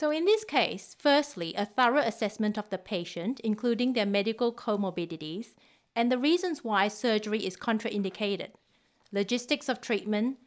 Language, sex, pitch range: English, female, 200-245 Hz